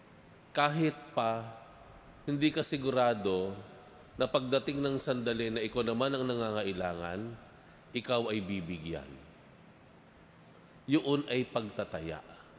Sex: male